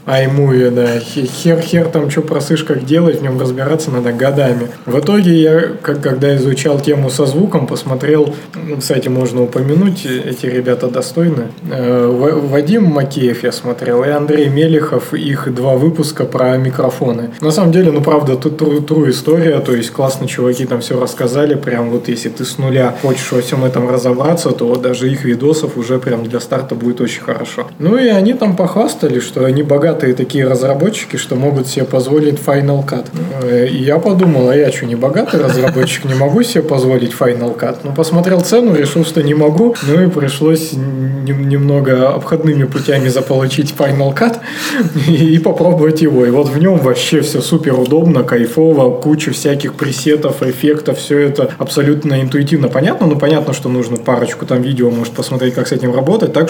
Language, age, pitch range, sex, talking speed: Russian, 20-39, 130-155 Hz, male, 175 wpm